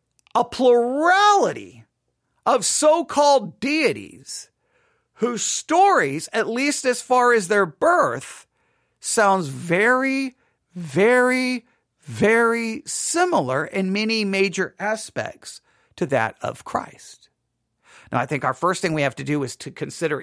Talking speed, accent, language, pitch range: 120 wpm, American, English, 160-245 Hz